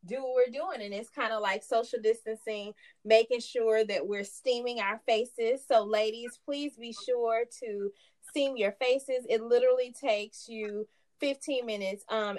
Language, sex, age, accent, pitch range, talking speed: English, female, 20-39, American, 220-270 Hz, 165 wpm